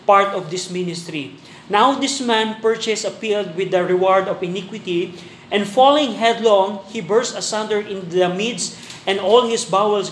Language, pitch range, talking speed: Filipino, 185-220 Hz, 165 wpm